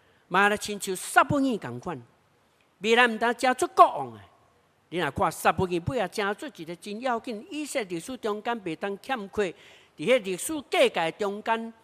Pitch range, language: 150-240 Hz, Chinese